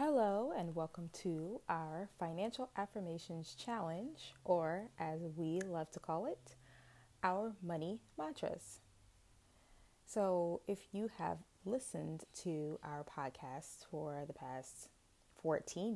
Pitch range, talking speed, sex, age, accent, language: 155-195 Hz, 115 wpm, female, 20-39, American, English